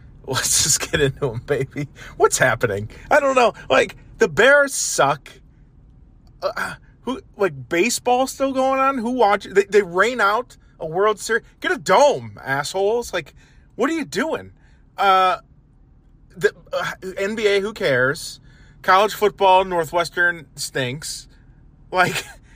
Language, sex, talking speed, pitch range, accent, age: English, male, 135 wpm, 135-200 Hz, American, 30-49